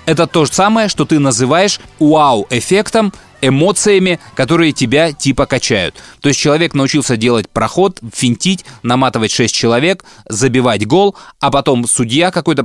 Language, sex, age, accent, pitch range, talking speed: Russian, male, 20-39, native, 125-170 Hz, 140 wpm